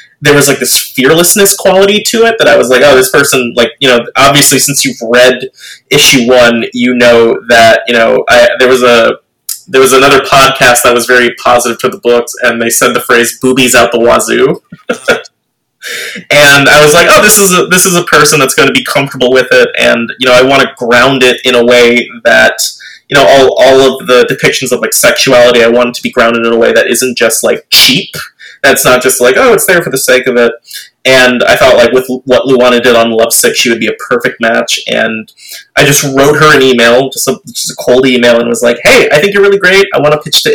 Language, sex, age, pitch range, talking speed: English, male, 20-39, 120-150 Hz, 245 wpm